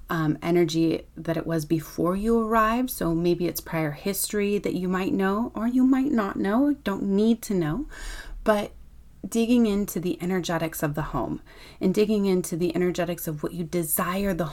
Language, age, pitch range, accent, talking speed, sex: English, 30-49, 160-195 Hz, American, 180 wpm, female